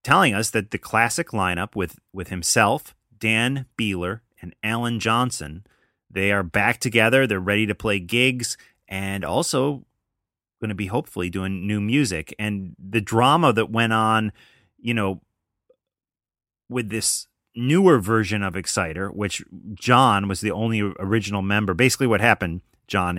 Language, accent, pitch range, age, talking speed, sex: English, American, 95-115 Hz, 30-49, 145 wpm, male